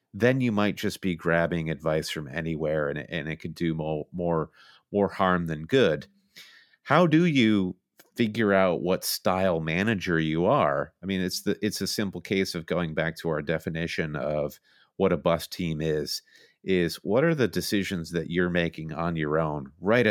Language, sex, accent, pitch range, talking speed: English, male, American, 80-105 Hz, 185 wpm